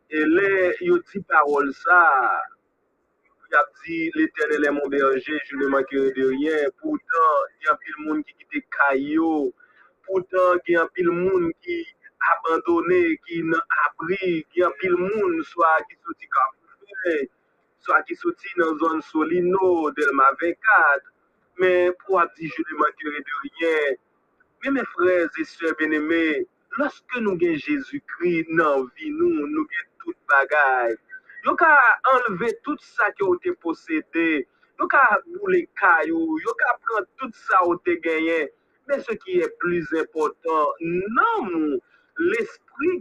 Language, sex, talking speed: English, male, 130 wpm